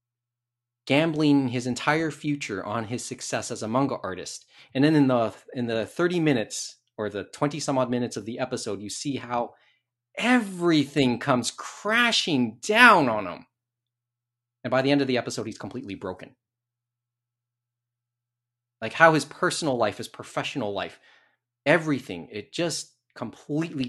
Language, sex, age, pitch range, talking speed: English, male, 30-49, 120-150 Hz, 145 wpm